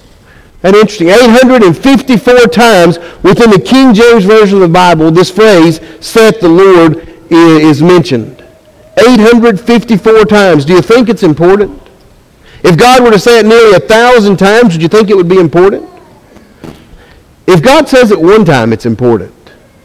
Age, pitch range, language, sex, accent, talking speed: 50-69, 155-215 Hz, English, male, American, 155 wpm